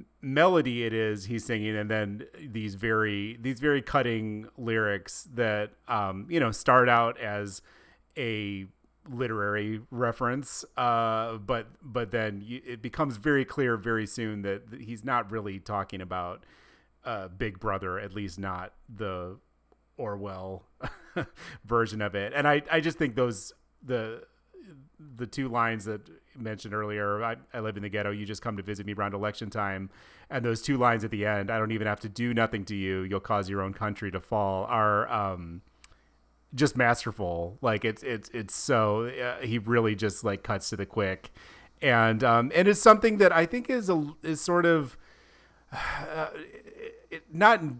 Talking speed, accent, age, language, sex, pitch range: 170 wpm, American, 30-49, English, male, 105-135 Hz